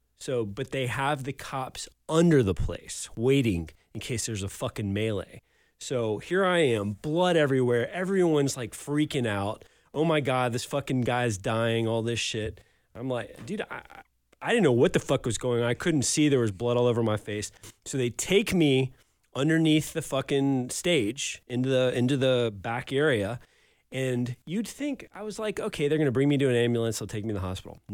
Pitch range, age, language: 115-185 Hz, 30-49, English